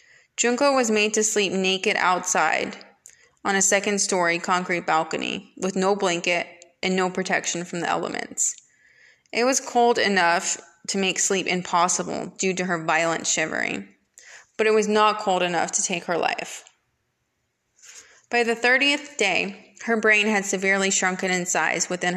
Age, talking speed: 20-39, 150 wpm